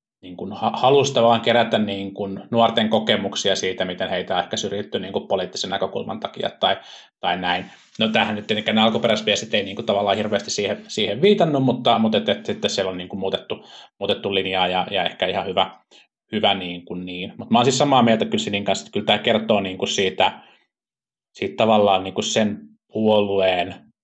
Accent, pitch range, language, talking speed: native, 105-130 Hz, Finnish, 190 wpm